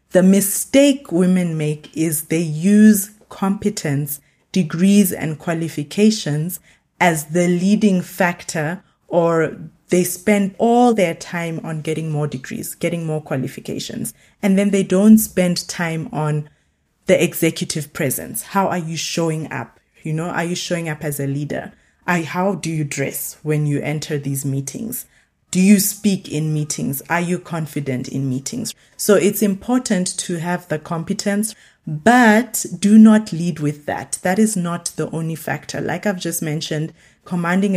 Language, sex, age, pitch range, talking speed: English, female, 20-39, 150-190 Hz, 150 wpm